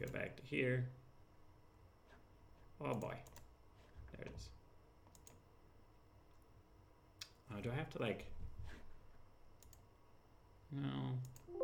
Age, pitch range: 30-49, 95-110 Hz